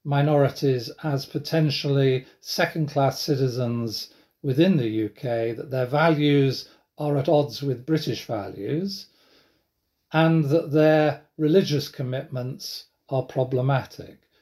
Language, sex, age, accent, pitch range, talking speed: English, male, 40-59, British, 130-155 Hz, 100 wpm